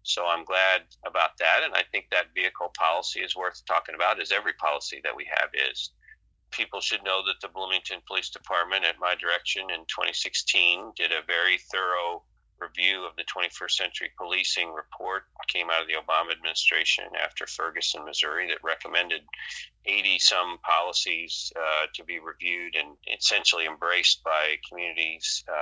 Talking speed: 160 wpm